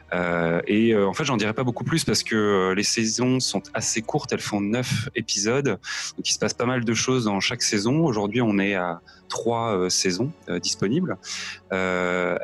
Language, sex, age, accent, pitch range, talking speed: French, male, 20-39, French, 90-115 Hz, 205 wpm